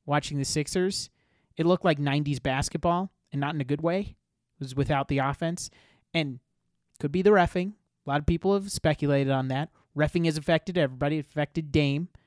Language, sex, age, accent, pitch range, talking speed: English, male, 30-49, American, 145-185 Hz, 185 wpm